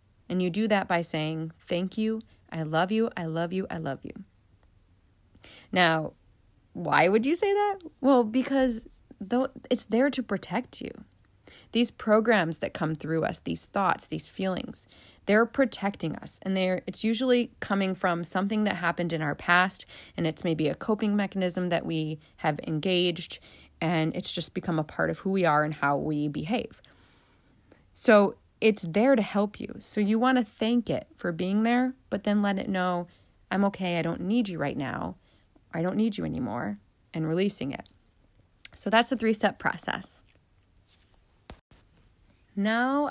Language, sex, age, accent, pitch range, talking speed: English, female, 30-49, American, 160-220 Hz, 170 wpm